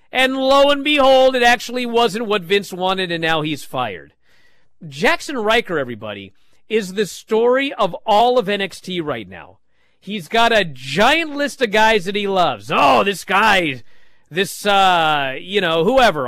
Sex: male